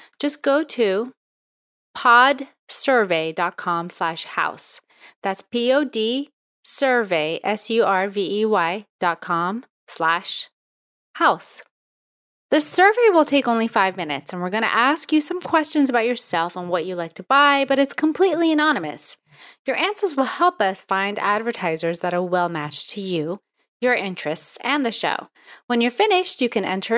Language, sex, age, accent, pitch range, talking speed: English, female, 30-49, American, 185-285 Hz, 140 wpm